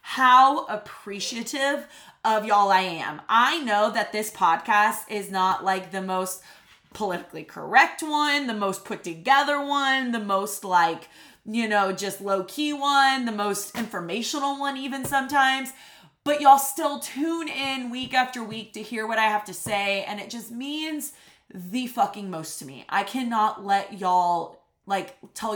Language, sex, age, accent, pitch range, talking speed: English, female, 20-39, American, 195-255 Hz, 160 wpm